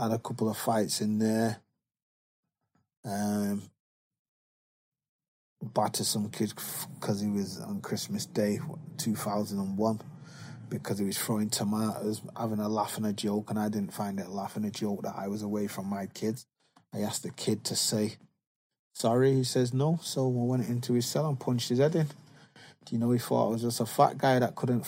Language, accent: English, British